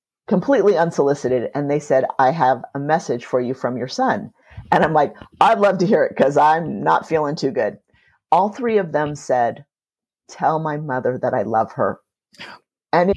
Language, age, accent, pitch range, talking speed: English, 50-69, American, 135-175 Hz, 185 wpm